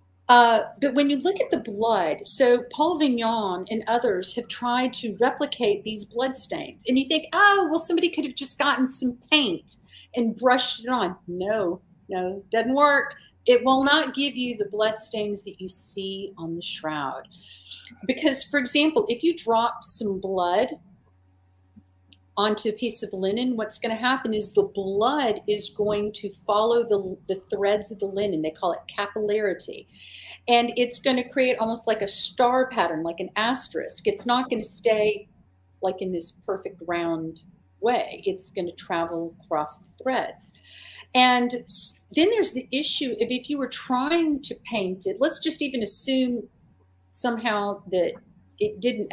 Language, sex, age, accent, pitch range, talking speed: English, female, 50-69, American, 190-255 Hz, 170 wpm